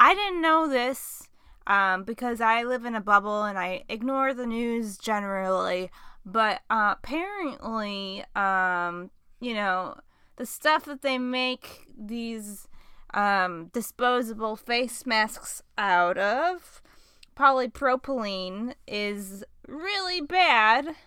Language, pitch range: English, 195-260 Hz